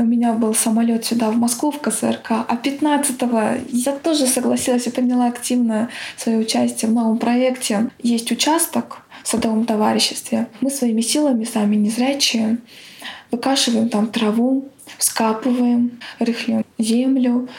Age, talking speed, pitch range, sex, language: 20-39, 130 wpm, 230-265 Hz, female, Russian